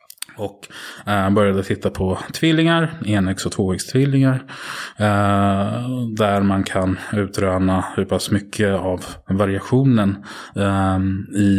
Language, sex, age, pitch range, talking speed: Swedish, male, 20-39, 95-110 Hz, 95 wpm